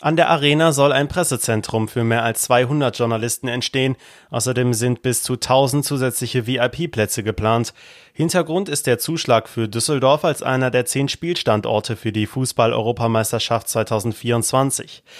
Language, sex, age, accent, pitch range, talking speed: German, male, 30-49, German, 115-135 Hz, 140 wpm